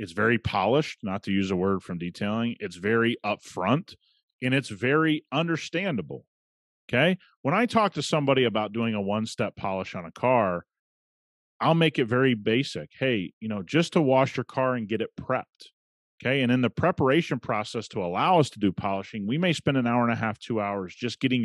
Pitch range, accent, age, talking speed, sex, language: 110-150 Hz, American, 30-49, 200 wpm, male, English